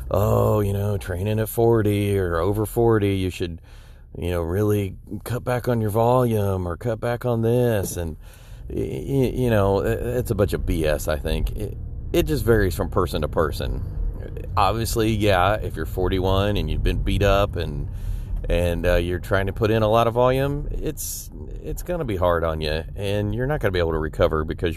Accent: American